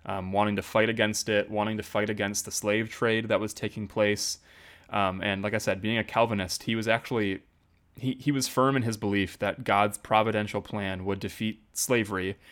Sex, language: male, English